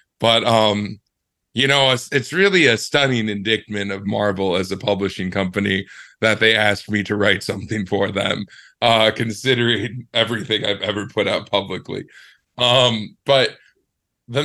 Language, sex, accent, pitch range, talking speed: English, male, American, 100-125 Hz, 150 wpm